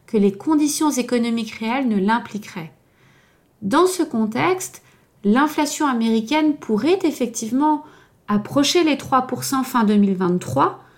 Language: English